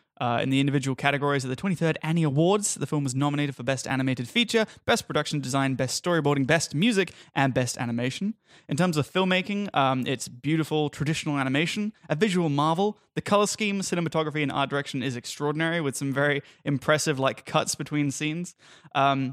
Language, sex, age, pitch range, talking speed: English, male, 20-39, 145-200 Hz, 180 wpm